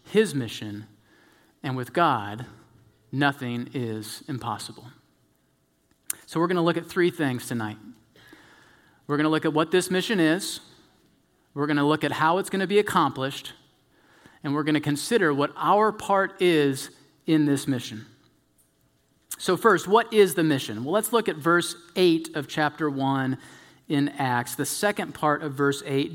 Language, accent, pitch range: English, American, 145-205 Hz